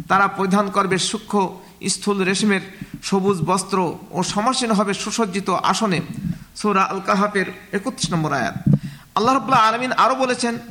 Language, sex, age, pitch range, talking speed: Bengali, male, 50-69, 185-225 Hz, 130 wpm